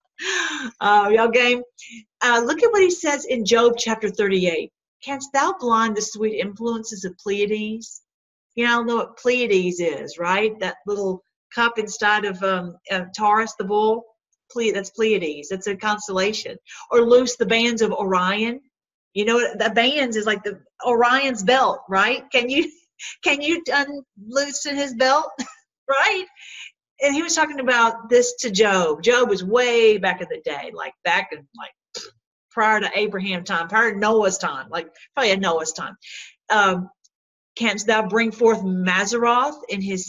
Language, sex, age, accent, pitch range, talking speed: English, female, 50-69, American, 190-245 Hz, 165 wpm